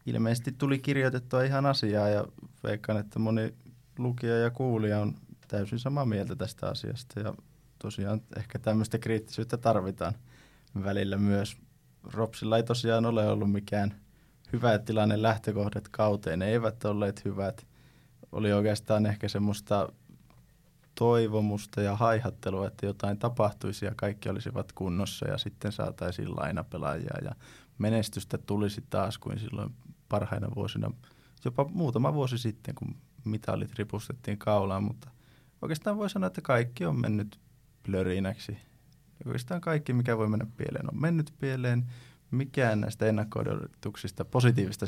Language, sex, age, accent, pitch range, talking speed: Finnish, male, 20-39, native, 105-130 Hz, 130 wpm